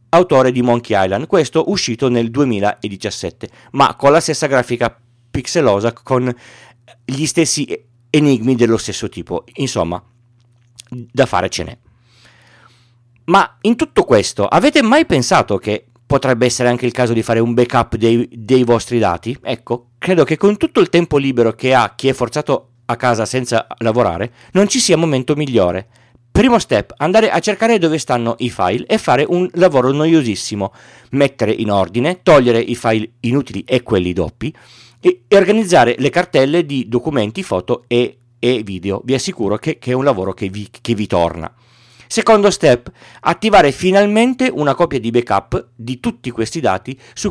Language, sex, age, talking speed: Italian, male, 40-59, 160 wpm